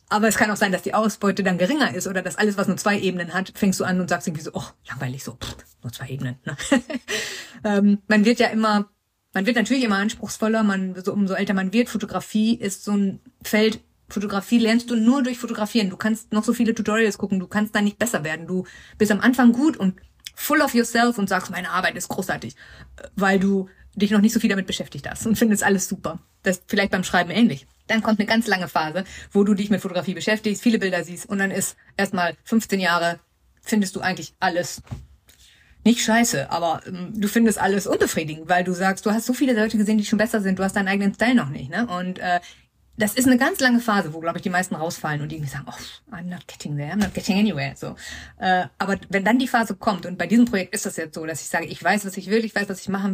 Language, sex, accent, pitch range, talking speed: German, female, German, 180-220 Hz, 240 wpm